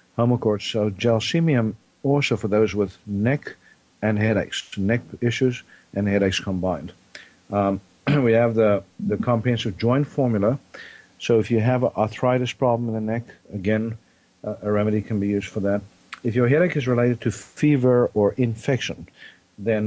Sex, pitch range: male, 105-125 Hz